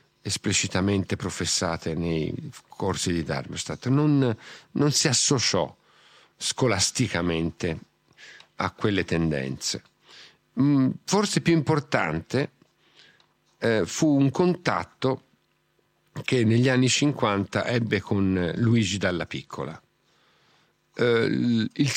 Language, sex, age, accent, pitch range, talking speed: Italian, male, 50-69, native, 100-135 Hz, 80 wpm